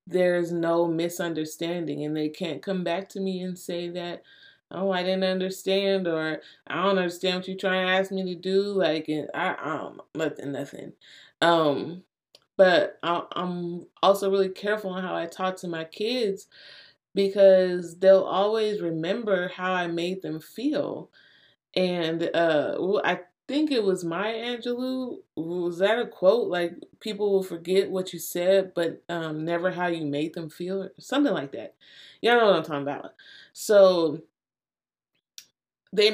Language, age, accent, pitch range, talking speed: English, 20-39, American, 170-195 Hz, 160 wpm